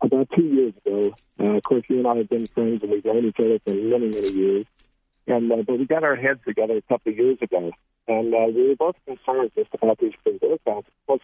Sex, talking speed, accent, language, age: male, 245 wpm, American, English, 50-69